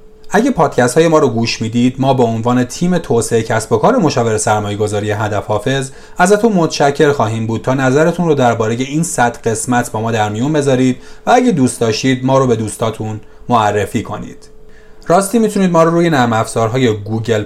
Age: 30-49